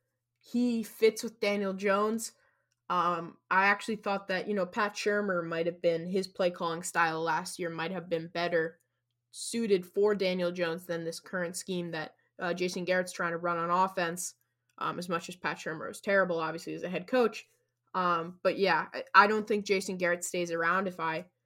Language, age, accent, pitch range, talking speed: English, 10-29, American, 165-190 Hz, 195 wpm